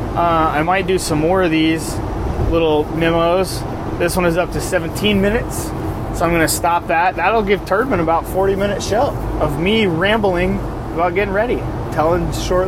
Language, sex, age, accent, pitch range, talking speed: English, male, 20-39, American, 150-185 Hz, 180 wpm